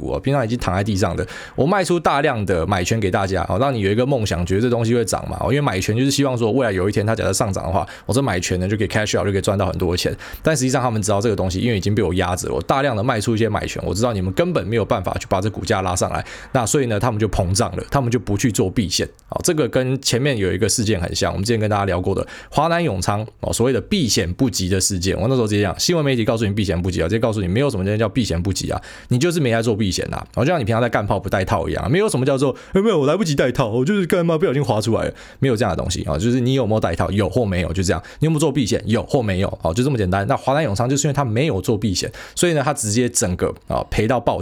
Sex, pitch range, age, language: male, 95-135 Hz, 20-39, Chinese